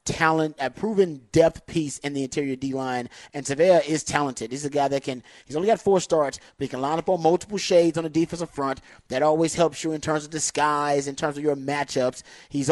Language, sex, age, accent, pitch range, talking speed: English, male, 30-49, American, 135-160 Hz, 235 wpm